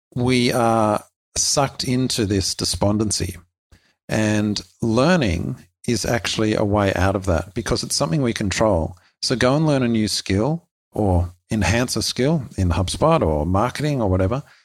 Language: English